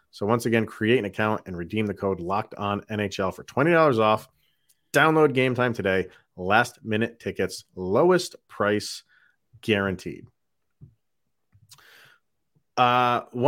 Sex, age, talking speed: male, 30-49, 120 wpm